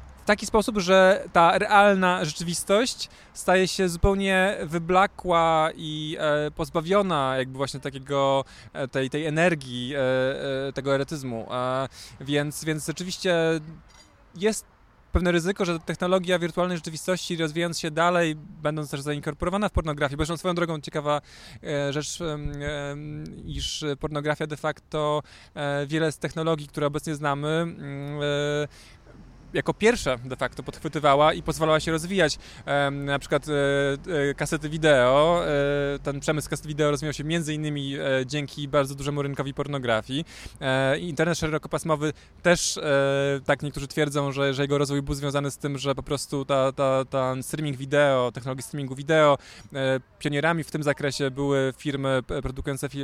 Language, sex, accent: Polish, male, native